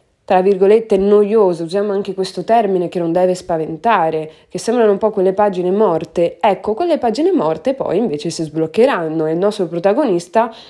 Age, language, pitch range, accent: 20-39, Italian, 170-205 Hz, native